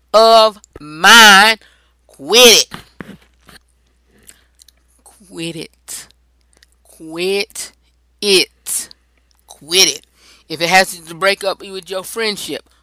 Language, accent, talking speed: English, American, 90 wpm